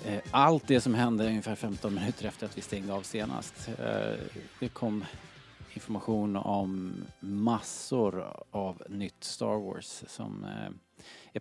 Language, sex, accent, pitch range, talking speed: Swedish, male, Norwegian, 100-130 Hz, 125 wpm